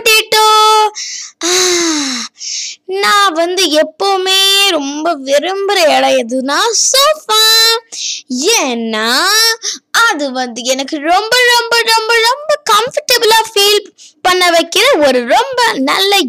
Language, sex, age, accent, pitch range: Tamil, female, 20-39, native, 275-405 Hz